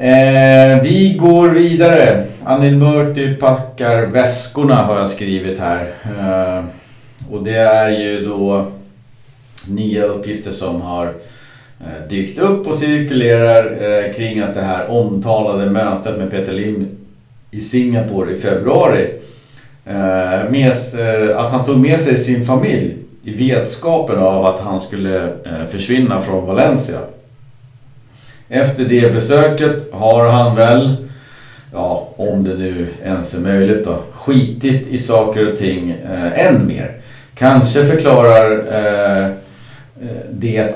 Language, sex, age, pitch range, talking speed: Swedish, male, 50-69, 100-130 Hz, 115 wpm